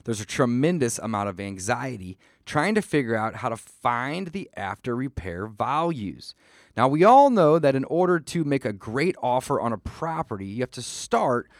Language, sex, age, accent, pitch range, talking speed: English, male, 30-49, American, 105-145 Hz, 185 wpm